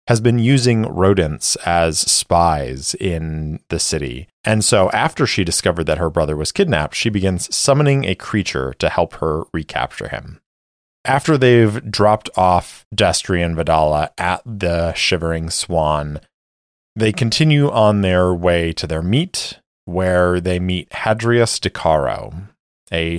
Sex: male